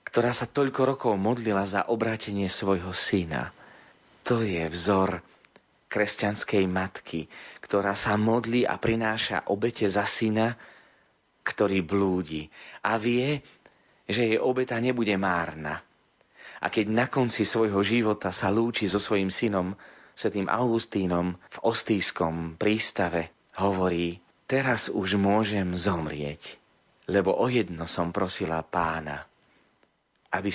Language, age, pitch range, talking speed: Slovak, 30-49, 90-115 Hz, 115 wpm